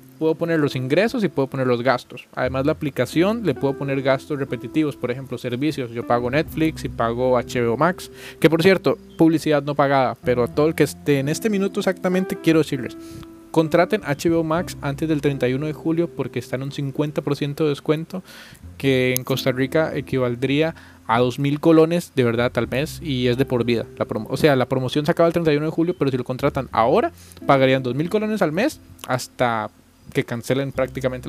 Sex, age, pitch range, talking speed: male, 20-39, 130-165 Hz, 195 wpm